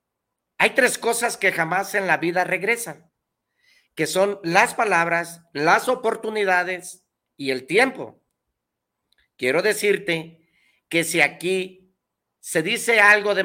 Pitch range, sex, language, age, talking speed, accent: 150-195 Hz, male, Spanish, 50-69, 120 wpm, Mexican